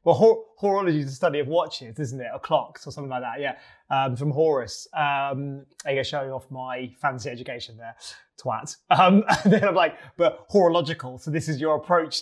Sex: male